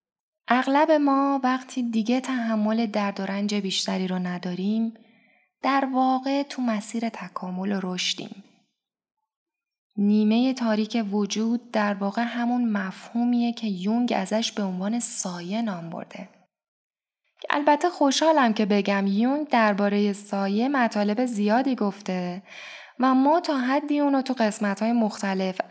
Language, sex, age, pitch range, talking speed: Persian, female, 10-29, 200-260 Hz, 120 wpm